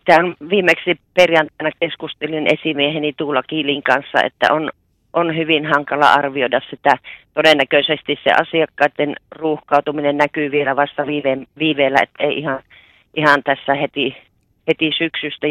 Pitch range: 135-155 Hz